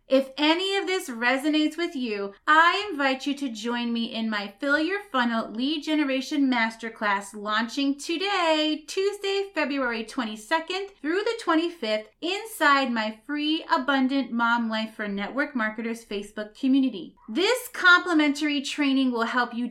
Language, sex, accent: English, female, American